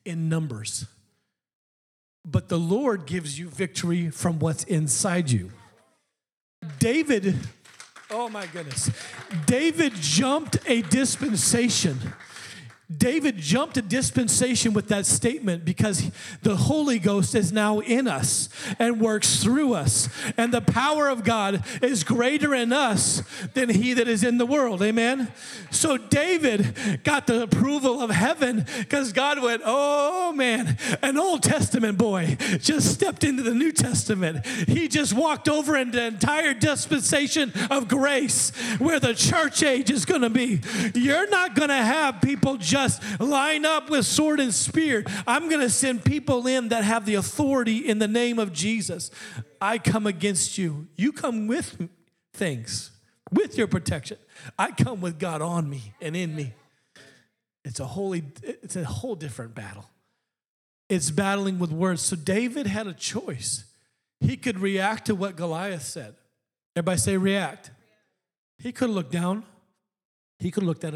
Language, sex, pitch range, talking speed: English, male, 170-255 Hz, 150 wpm